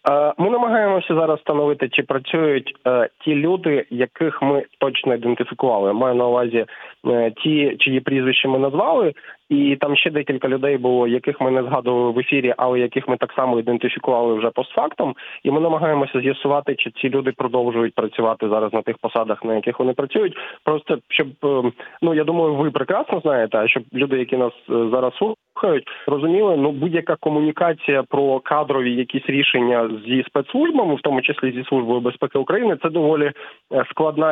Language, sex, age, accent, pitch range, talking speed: Ukrainian, male, 20-39, native, 125-155 Hz, 160 wpm